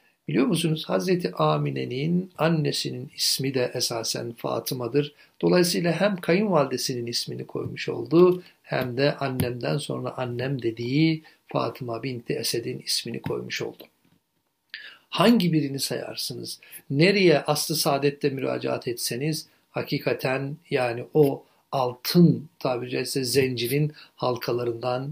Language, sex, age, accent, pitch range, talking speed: Turkish, male, 60-79, native, 125-160 Hz, 100 wpm